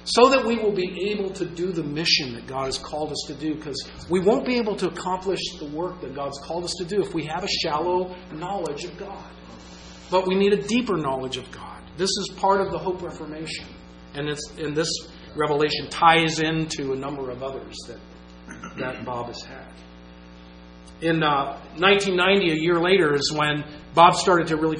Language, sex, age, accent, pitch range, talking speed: English, male, 40-59, American, 155-205 Hz, 200 wpm